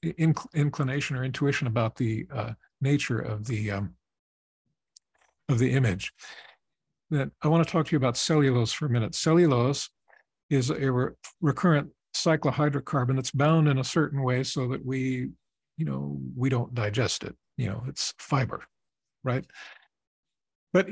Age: 50-69